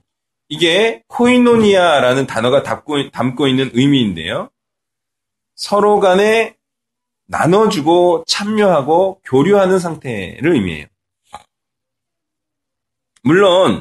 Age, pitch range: 30-49, 140-205 Hz